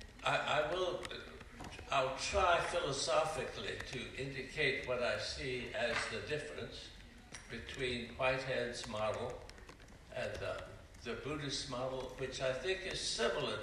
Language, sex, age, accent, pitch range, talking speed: English, male, 60-79, American, 115-135 Hz, 115 wpm